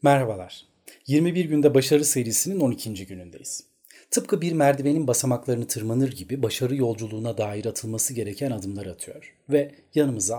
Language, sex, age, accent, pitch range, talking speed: Turkish, male, 40-59, native, 115-150 Hz, 125 wpm